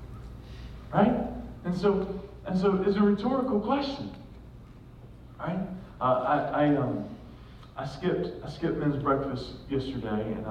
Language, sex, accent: English, male, American